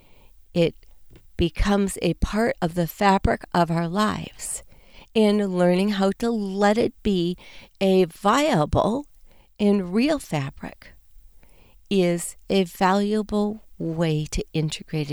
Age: 50-69